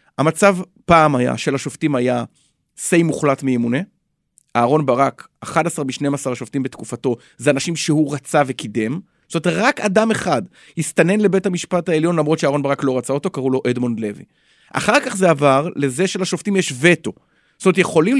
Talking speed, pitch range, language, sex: 170 wpm, 135-195 Hz, Hebrew, male